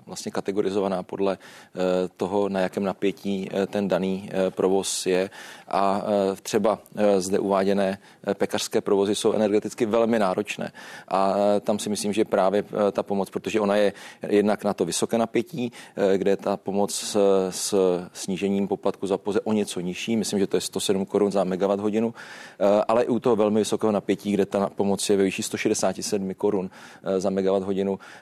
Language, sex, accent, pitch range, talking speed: Czech, male, native, 95-110 Hz, 155 wpm